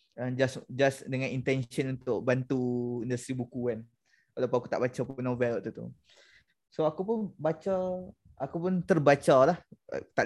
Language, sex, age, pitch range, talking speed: Malay, male, 20-39, 120-145 Hz, 145 wpm